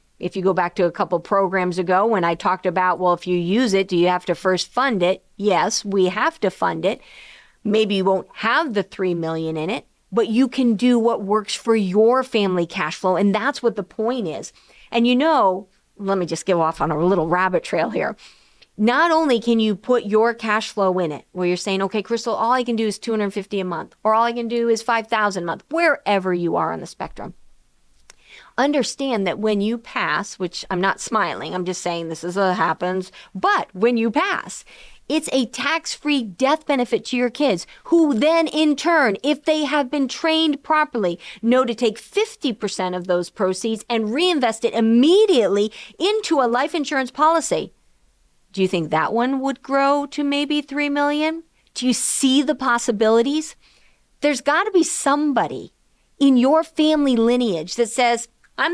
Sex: female